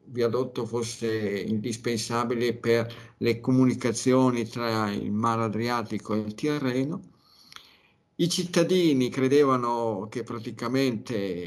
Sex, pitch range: male, 115-140 Hz